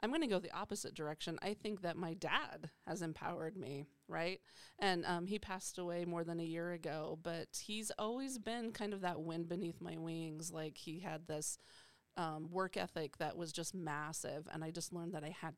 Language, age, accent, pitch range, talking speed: English, 30-49, American, 160-195 Hz, 210 wpm